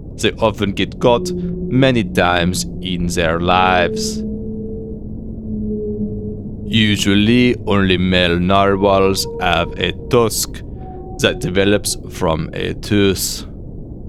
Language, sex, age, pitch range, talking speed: English, male, 30-49, 90-110 Hz, 90 wpm